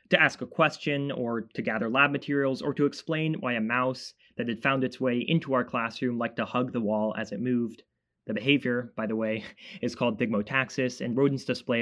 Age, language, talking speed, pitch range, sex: 20-39, English, 215 wpm, 115-145 Hz, male